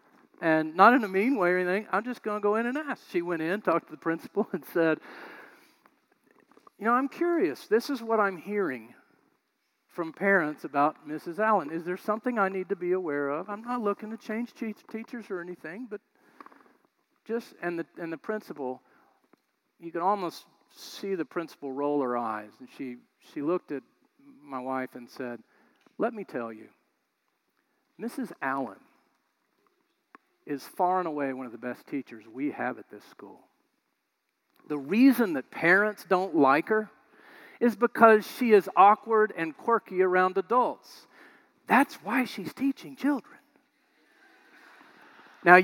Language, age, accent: English, 50-69, American